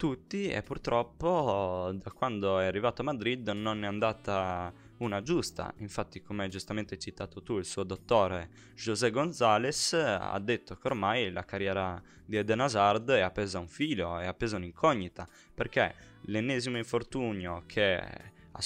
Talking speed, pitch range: 150 wpm, 95-120 Hz